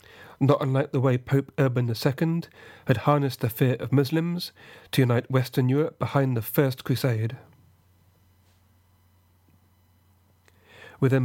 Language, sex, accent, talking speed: English, male, British, 115 wpm